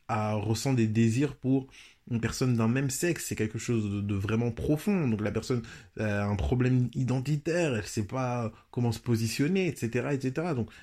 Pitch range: 115-140 Hz